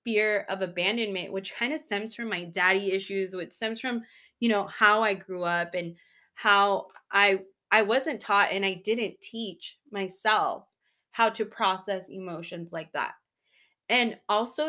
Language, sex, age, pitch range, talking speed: English, female, 20-39, 190-235 Hz, 160 wpm